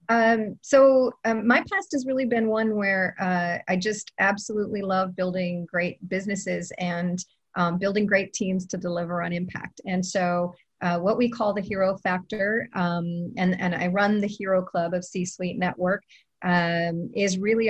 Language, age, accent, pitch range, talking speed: English, 40-59, American, 180-215 Hz, 170 wpm